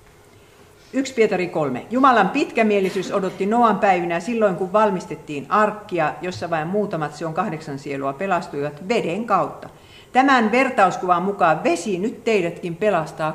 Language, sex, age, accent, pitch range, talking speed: Finnish, female, 50-69, native, 150-220 Hz, 130 wpm